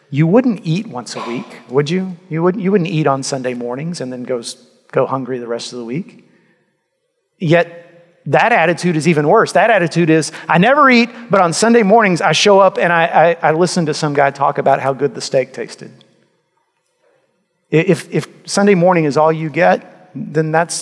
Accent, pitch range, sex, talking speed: American, 140-170 Hz, male, 200 wpm